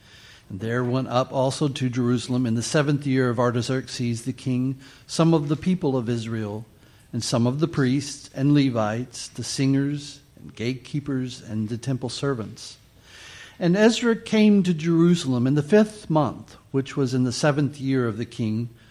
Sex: male